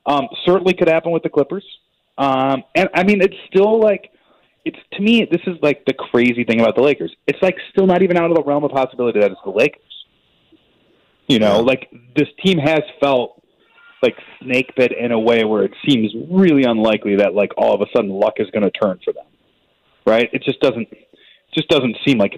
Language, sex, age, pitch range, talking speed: English, male, 30-49, 130-195 Hz, 215 wpm